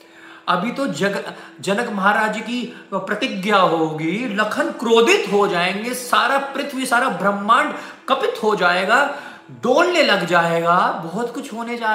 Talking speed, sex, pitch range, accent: 130 wpm, male, 165-240 Hz, Indian